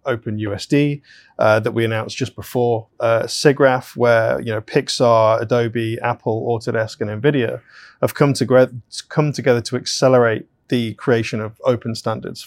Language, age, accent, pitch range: English, 20-39, British, 110-125 Hz